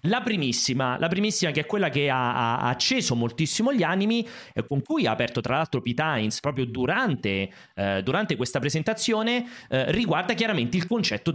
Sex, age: male, 30-49